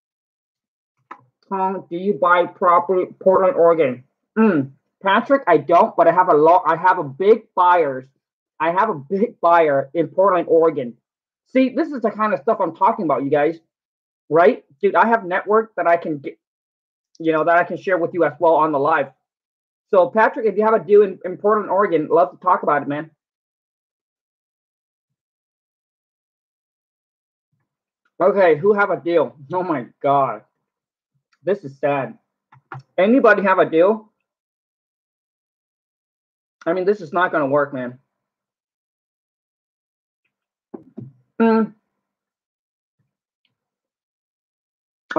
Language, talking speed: English, 140 wpm